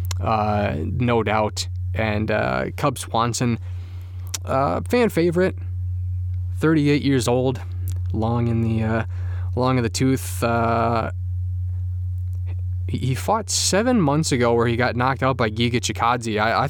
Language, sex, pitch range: English, male, 90-120 Hz